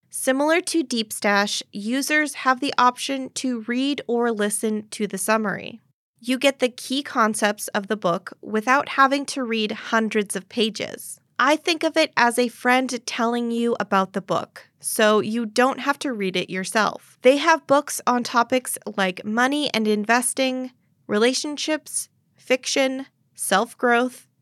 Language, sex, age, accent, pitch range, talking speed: English, female, 20-39, American, 215-265 Hz, 150 wpm